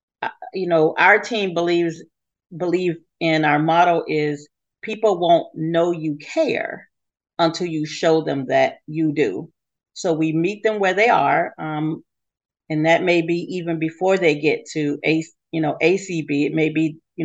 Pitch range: 150-175 Hz